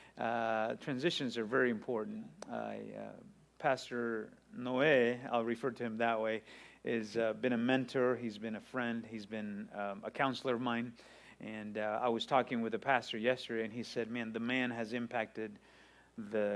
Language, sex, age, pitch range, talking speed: English, male, 30-49, 110-125 Hz, 175 wpm